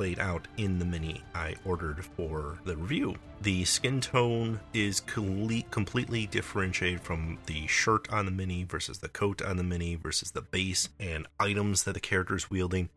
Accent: American